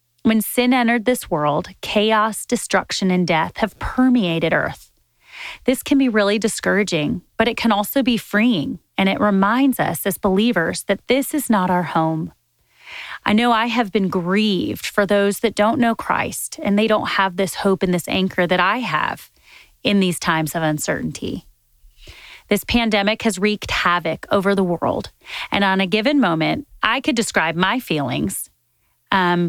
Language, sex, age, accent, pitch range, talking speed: English, female, 30-49, American, 180-235 Hz, 170 wpm